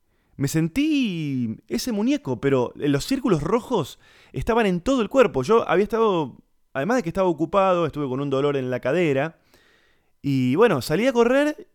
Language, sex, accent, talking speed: Spanish, male, Argentinian, 170 wpm